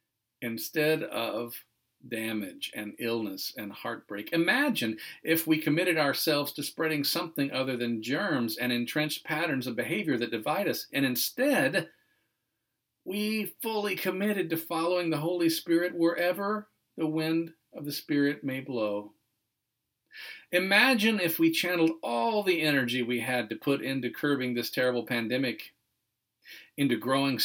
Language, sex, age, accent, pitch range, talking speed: English, male, 50-69, American, 130-210 Hz, 135 wpm